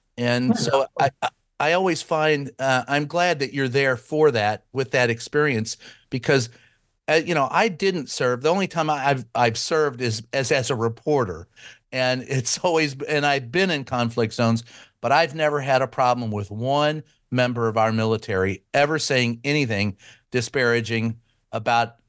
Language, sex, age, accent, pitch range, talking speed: English, male, 50-69, American, 120-160 Hz, 165 wpm